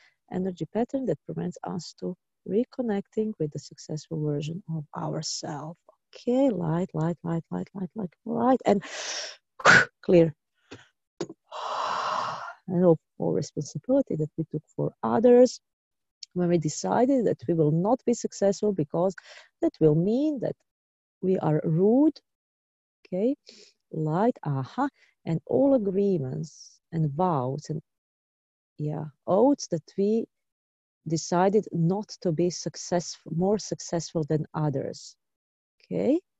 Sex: female